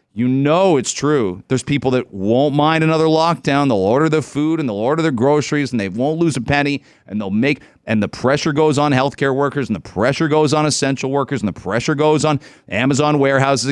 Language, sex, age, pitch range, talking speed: English, male, 40-59, 125-150 Hz, 220 wpm